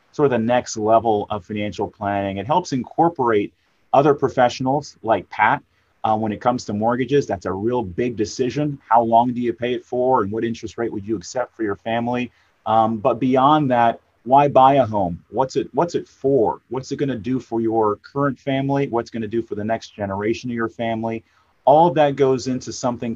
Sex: male